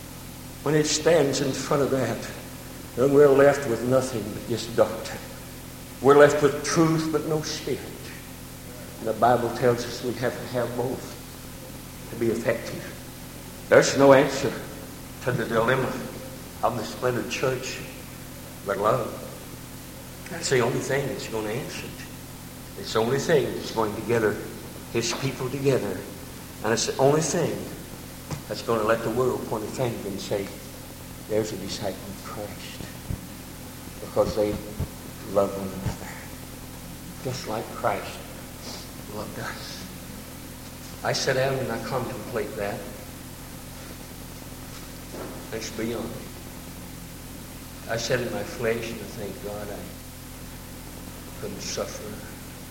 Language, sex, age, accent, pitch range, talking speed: English, male, 60-79, American, 100-135 Hz, 135 wpm